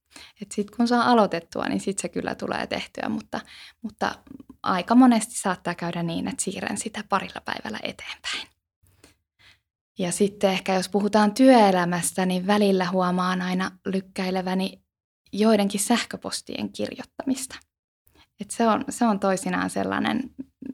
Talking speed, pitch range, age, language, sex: 130 wpm, 175-220 Hz, 20-39, Finnish, female